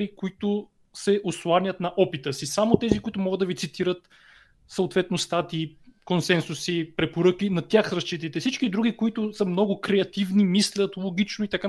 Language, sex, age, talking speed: Bulgarian, male, 30-49, 155 wpm